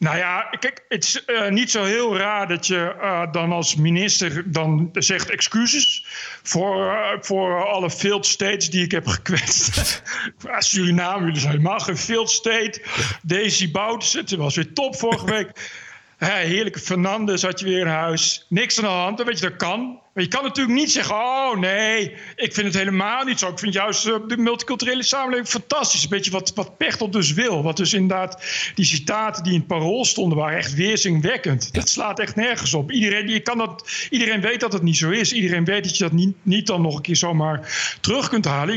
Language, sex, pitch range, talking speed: Dutch, male, 170-220 Hz, 205 wpm